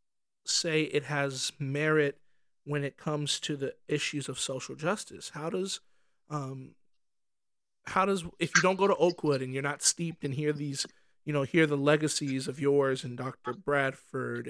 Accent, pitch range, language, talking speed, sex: American, 140-165 Hz, English, 170 wpm, male